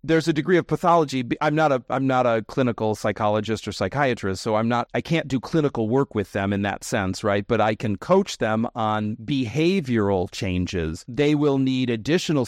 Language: English